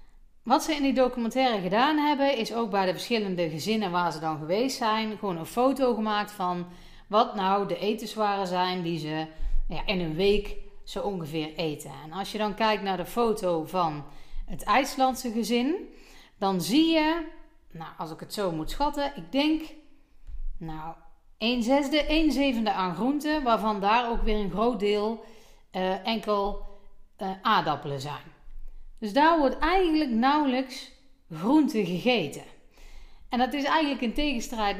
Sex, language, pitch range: female, Dutch, 185-255 Hz